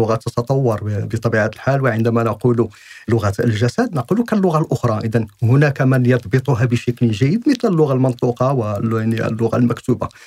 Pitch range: 125-180 Hz